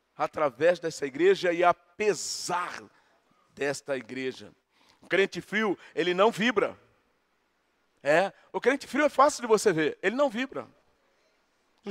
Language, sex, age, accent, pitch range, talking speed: Portuguese, male, 40-59, Brazilian, 195-260 Hz, 130 wpm